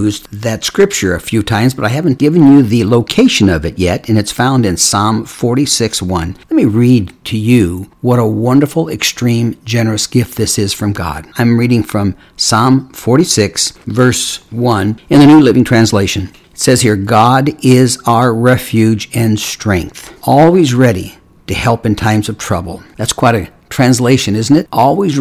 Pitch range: 105-130 Hz